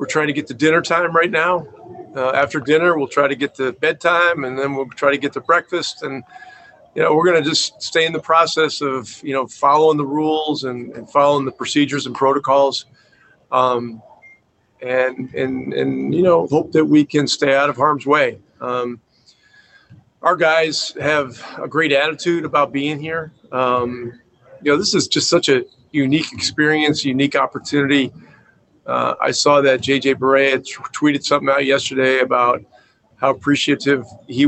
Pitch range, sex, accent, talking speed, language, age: 130-155 Hz, male, American, 175 wpm, English, 40-59